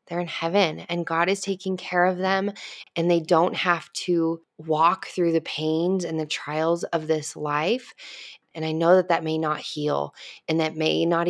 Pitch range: 155-180 Hz